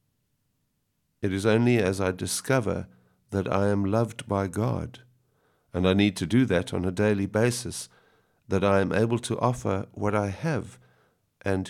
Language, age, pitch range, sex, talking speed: English, 50-69, 95-115 Hz, male, 165 wpm